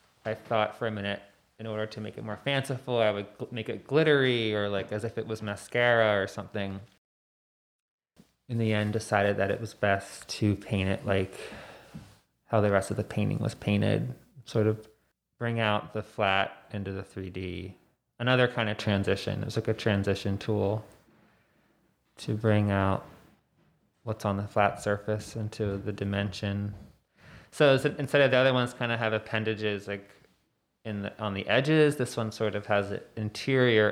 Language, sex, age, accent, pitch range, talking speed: English, male, 20-39, American, 105-120 Hz, 175 wpm